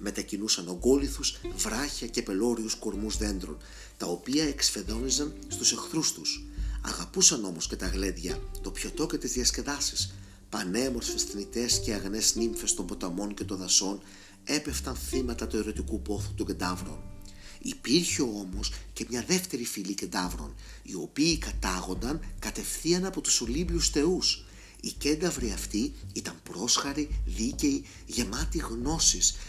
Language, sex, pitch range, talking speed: Greek, male, 95-130 Hz, 130 wpm